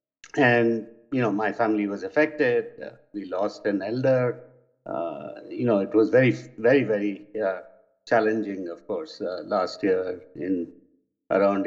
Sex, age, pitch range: male, 60-79, 115-150 Hz